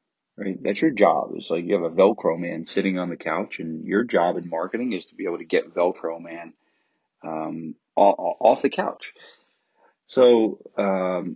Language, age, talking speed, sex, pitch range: English, 30-49, 180 wpm, male, 90-105 Hz